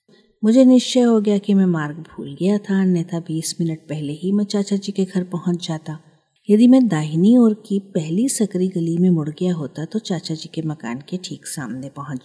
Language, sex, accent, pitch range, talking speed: Hindi, female, native, 160-205 Hz, 210 wpm